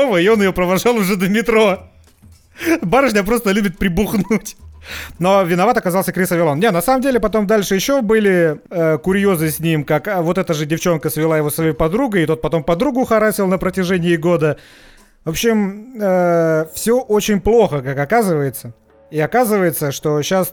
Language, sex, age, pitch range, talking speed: Russian, male, 30-49, 155-205 Hz, 170 wpm